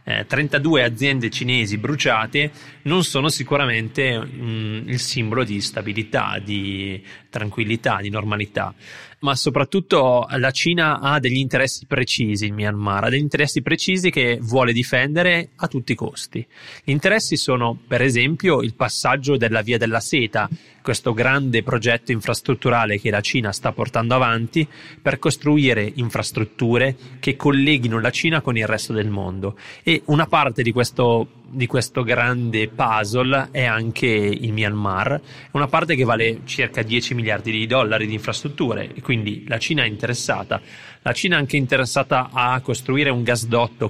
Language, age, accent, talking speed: Italian, 30-49, native, 150 wpm